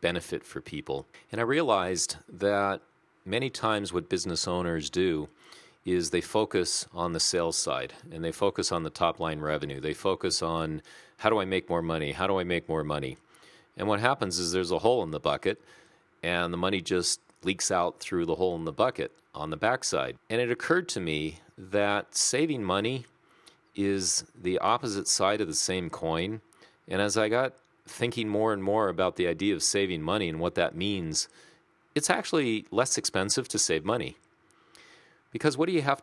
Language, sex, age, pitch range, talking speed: English, male, 40-59, 90-110 Hz, 190 wpm